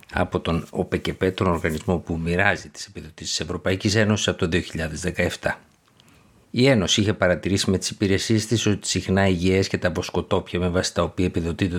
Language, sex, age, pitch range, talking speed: Greek, male, 50-69, 90-105 Hz, 180 wpm